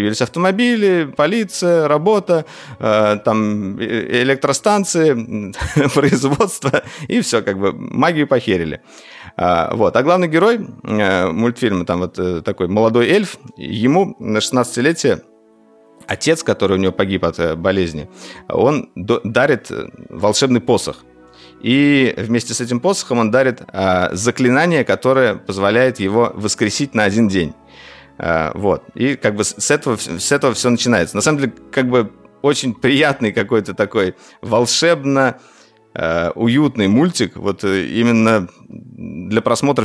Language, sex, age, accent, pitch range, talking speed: Russian, male, 50-69, native, 100-130 Hz, 115 wpm